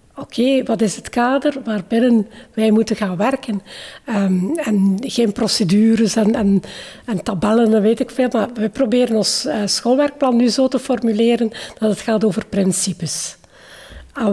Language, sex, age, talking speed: Dutch, female, 60-79, 145 wpm